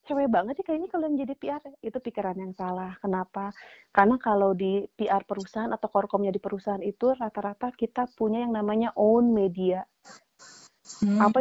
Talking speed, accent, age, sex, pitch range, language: 170 wpm, native, 30-49, female, 205-265 Hz, Indonesian